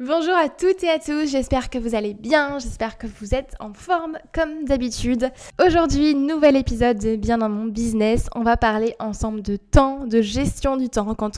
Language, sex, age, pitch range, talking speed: French, female, 20-39, 210-255 Hz, 200 wpm